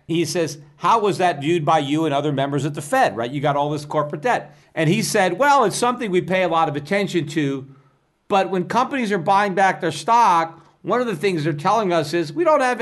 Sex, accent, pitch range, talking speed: male, American, 155-210 Hz, 250 wpm